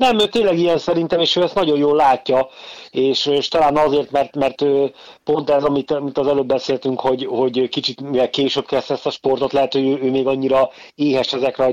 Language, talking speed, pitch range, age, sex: Hungarian, 215 wpm, 120-140 Hz, 30-49, male